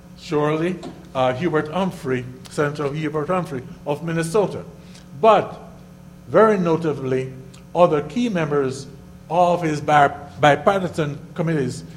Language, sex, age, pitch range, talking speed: English, male, 60-79, 135-175 Hz, 95 wpm